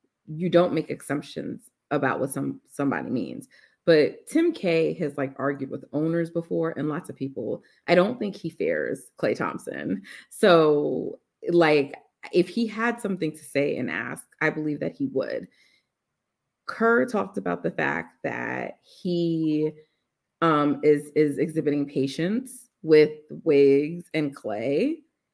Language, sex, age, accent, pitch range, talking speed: English, female, 30-49, American, 140-180 Hz, 140 wpm